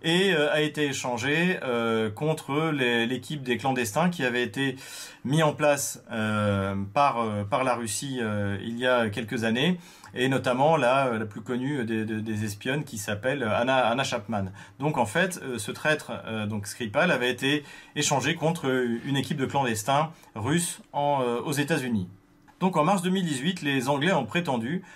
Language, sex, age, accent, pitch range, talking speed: French, male, 40-59, French, 115-150 Hz, 170 wpm